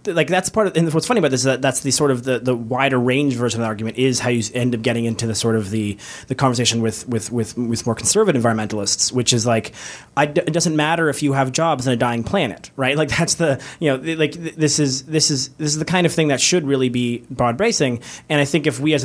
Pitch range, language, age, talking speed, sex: 120-145 Hz, English, 20-39, 275 wpm, male